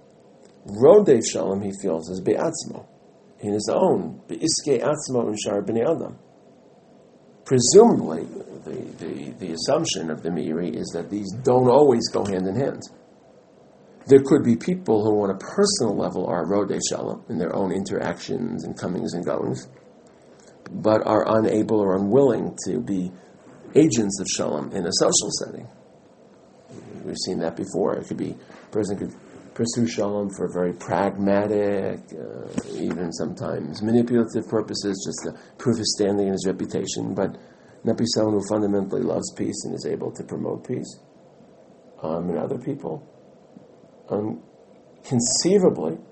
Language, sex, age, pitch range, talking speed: English, male, 50-69, 95-120 Hz, 145 wpm